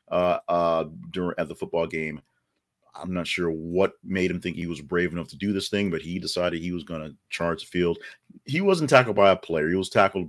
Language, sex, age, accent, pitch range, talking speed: English, male, 40-59, American, 80-110 Hz, 235 wpm